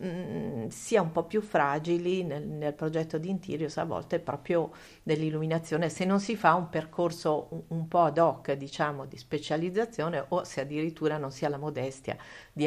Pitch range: 150-170 Hz